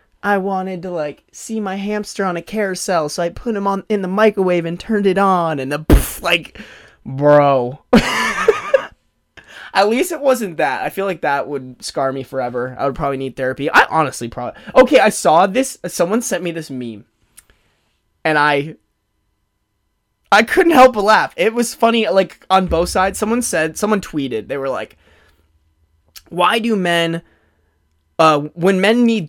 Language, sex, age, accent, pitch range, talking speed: English, male, 20-39, American, 135-205 Hz, 170 wpm